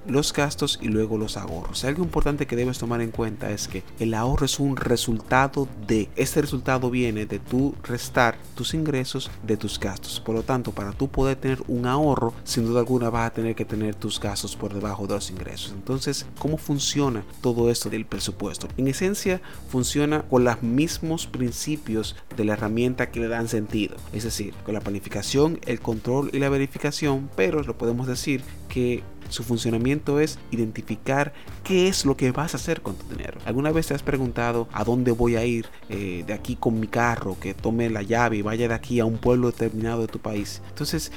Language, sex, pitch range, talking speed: Spanish, male, 110-135 Hz, 200 wpm